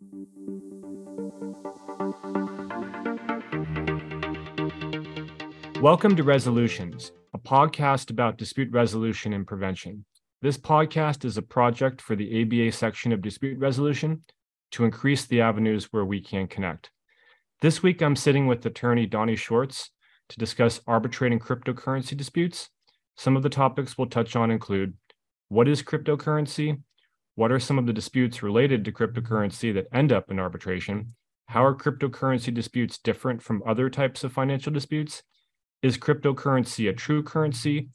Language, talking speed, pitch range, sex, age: English, 135 wpm, 105-135 Hz, male, 30-49